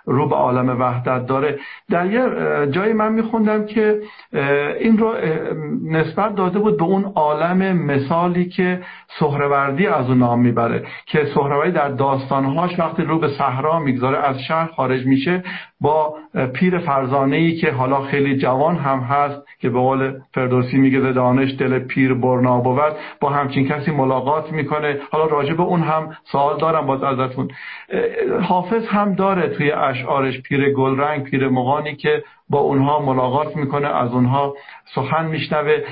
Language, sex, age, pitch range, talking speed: Persian, male, 50-69, 135-170 Hz, 150 wpm